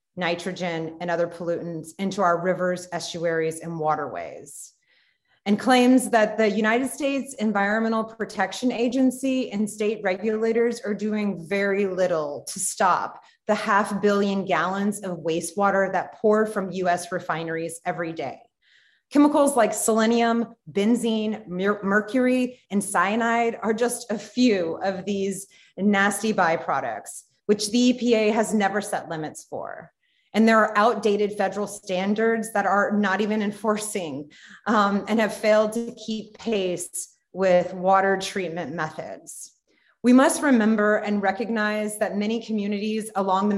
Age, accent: 30-49, American